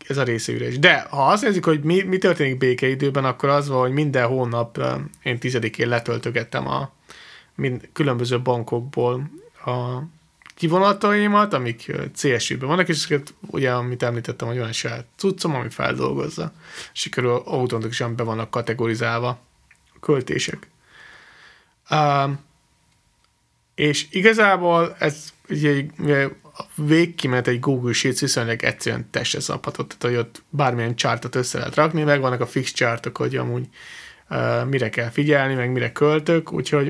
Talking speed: 135 wpm